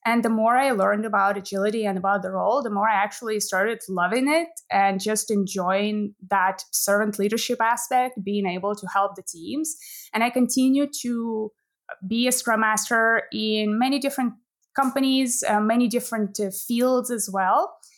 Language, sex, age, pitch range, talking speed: English, female, 20-39, 195-240 Hz, 165 wpm